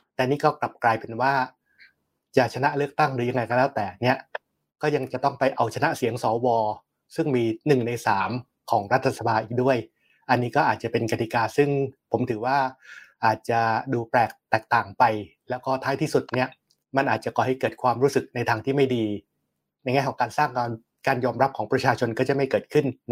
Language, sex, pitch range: Thai, male, 115-140 Hz